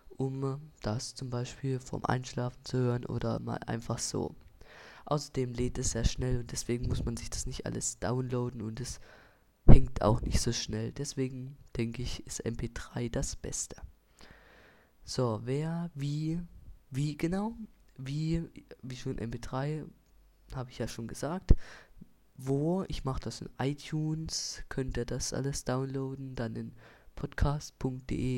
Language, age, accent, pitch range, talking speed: German, 20-39, German, 115-140 Hz, 145 wpm